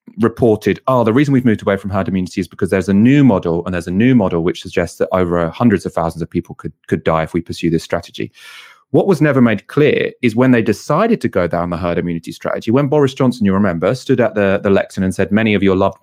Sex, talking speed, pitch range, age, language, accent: male, 260 wpm, 95-130 Hz, 30-49, English, British